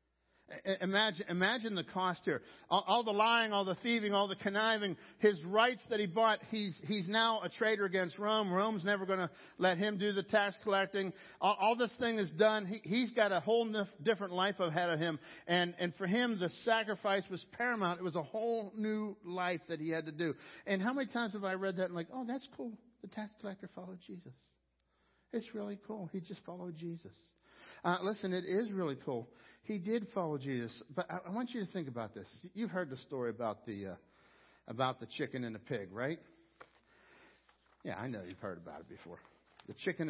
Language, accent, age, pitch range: English, American, 60-79, 135-210 Hz